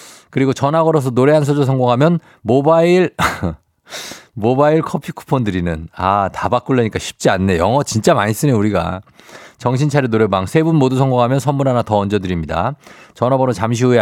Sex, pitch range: male, 100-145 Hz